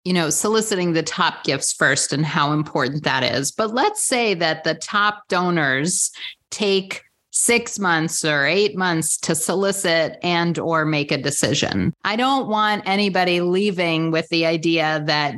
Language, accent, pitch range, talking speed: English, American, 160-205 Hz, 160 wpm